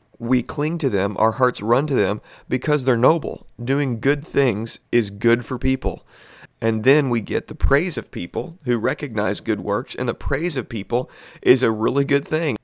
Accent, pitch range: American, 110-135 Hz